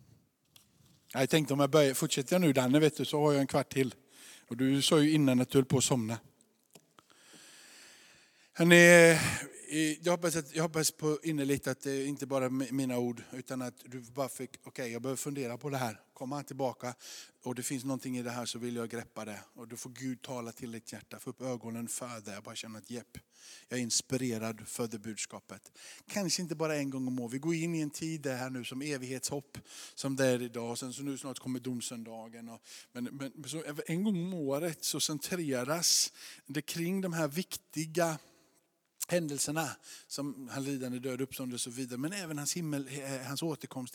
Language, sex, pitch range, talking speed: Swedish, male, 130-165 Hz, 205 wpm